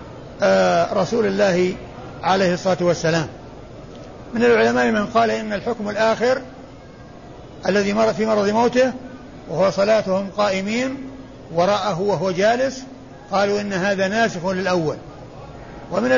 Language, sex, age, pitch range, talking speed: Arabic, male, 50-69, 180-225 Hz, 110 wpm